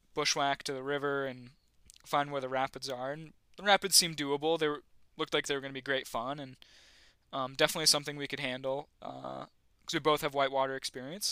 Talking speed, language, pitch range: 210 wpm, English, 135-155 Hz